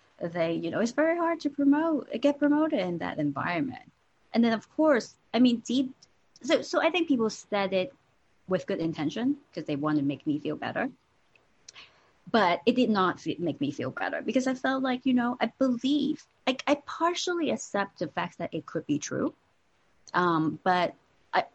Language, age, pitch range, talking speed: English, 30-49, 160-240 Hz, 190 wpm